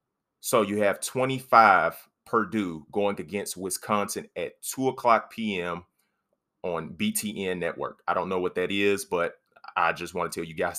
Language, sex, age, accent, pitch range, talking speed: English, male, 30-49, American, 95-115 Hz, 160 wpm